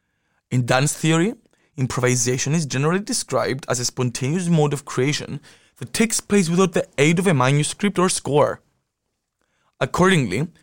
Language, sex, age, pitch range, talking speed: English, male, 20-39, 130-185 Hz, 140 wpm